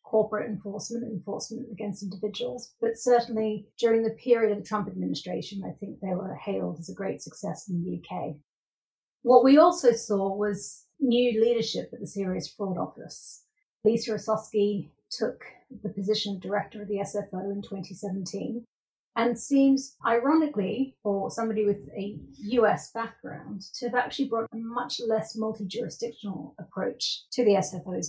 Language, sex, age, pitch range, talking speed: English, female, 40-59, 195-230 Hz, 150 wpm